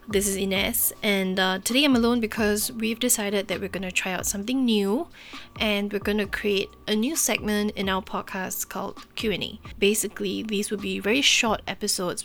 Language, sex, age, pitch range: English, female, 20-39, 195-225 Hz